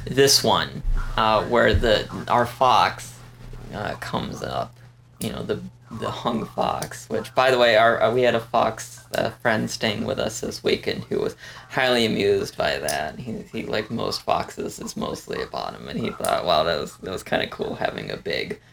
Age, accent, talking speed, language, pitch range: 20-39, American, 195 wpm, English, 120-140 Hz